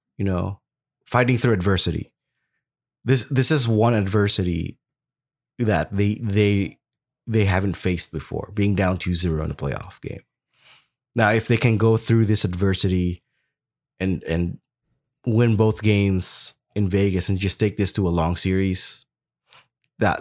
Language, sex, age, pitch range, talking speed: English, male, 20-39, 95-115 Hz, 145 wpm